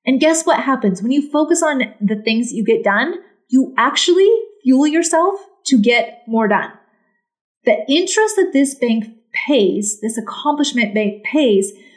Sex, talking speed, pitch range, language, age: female, 155 wpm, 215-300 Hz, English, 30-49